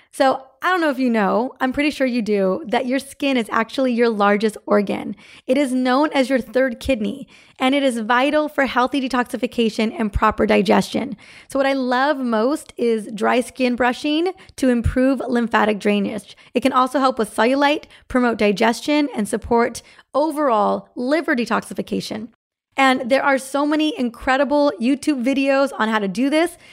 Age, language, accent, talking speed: 20-39, English, American, 170 wpm